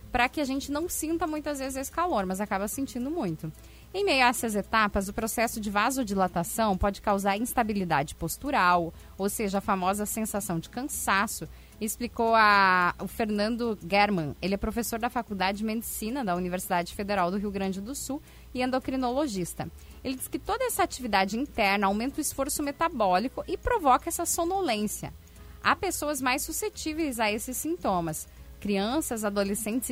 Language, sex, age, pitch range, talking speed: Portuguese, female, 10-29, 205-285 Hz, 160 wpm